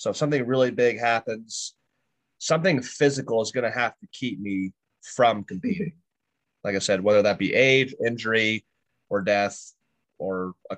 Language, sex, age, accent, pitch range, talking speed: English, male, 30-49, American, 100-130 Hz, 160 wpm